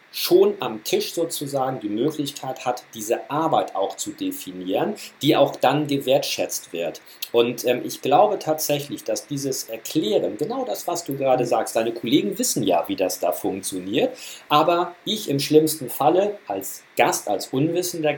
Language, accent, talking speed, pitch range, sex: German, German, 160 wpm, 115-155 Hz, male